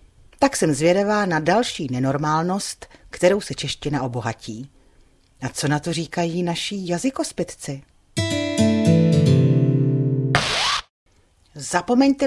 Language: Czech